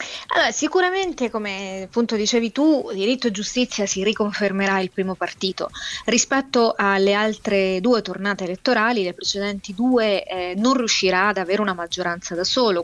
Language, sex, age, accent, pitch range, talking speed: Italian, female, 20-39, native, 190-235 Hz, 150 wpm